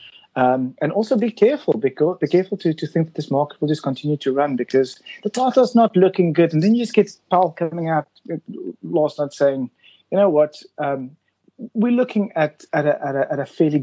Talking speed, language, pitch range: 220 wpm, English, 135-180 Hz